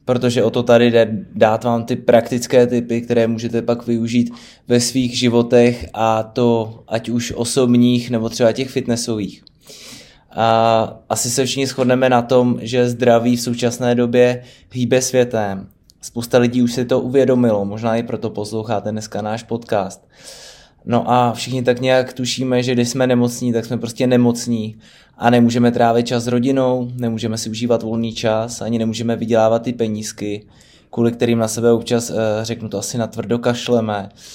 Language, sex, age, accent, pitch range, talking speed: Czech, male, 20-39, native, 115-125 Hz, 160 wpm